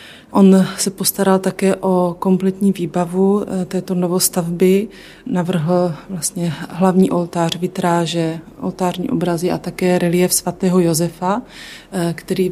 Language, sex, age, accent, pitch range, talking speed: Czech, female, 30-49, native, 175-190 Hz, 105 wpm